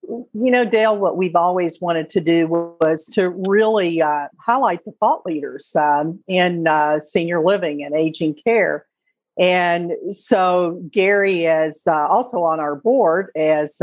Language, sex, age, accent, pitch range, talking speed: English, female, 50-69, American, 160-215 Hz, 150 wpm